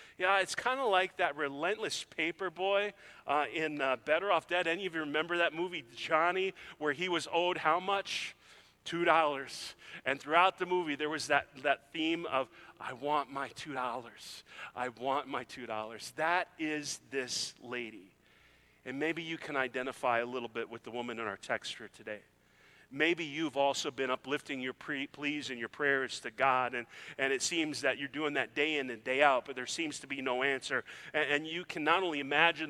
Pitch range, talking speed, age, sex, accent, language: 140-175 Hz, 195 wpm, 40-59, male, American, English